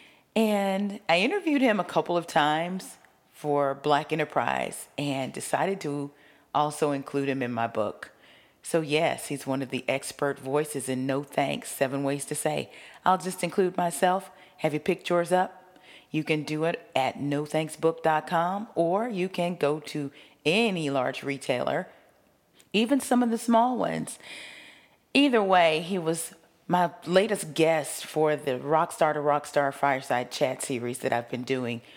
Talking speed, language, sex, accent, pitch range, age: 155 wpm, English, female, American, 140-190 Hz, 40-59